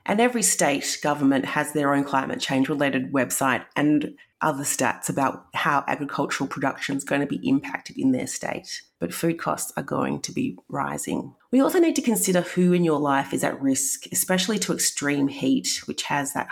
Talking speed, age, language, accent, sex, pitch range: 195 wpm, 30-49, English, Australian, female, 145-190 Hz